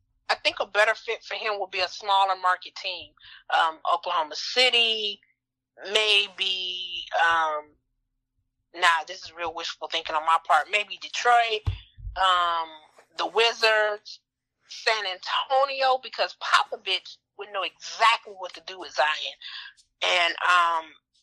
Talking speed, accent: 130 wpm, American